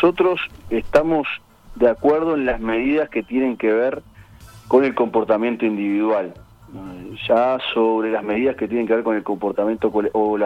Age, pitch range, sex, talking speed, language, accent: 40-59, 105-125 Hz, male, 160 wpm, Spanish, Argentinian